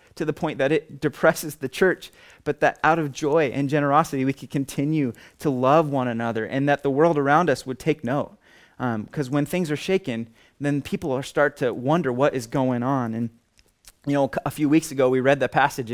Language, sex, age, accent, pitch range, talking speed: English, male, 20-39, American, 130-165 Hz, 220 wpm